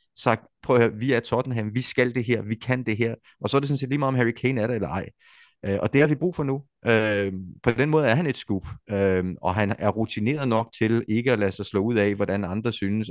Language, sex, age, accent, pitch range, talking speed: Danish, male, 30-49, native, 95-120 Hz, 280 wpm